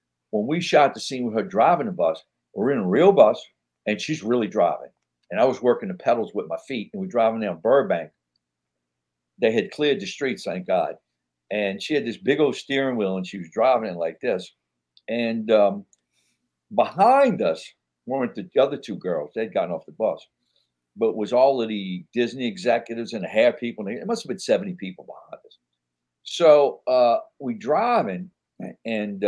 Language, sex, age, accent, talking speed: English, male, 60-79, American, 190 wpm